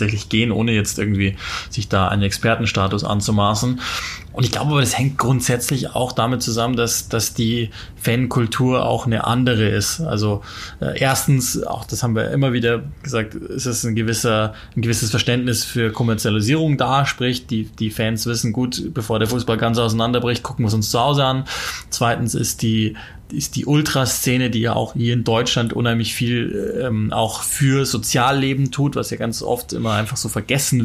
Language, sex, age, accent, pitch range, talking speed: German, male, 20-39, German, 110-125 Hz, 180 wpm